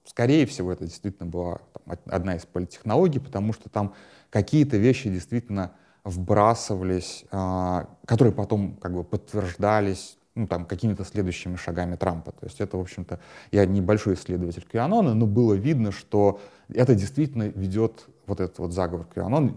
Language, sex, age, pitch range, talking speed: Russian, male, 30-49, 90-110 Hz, 140 wpm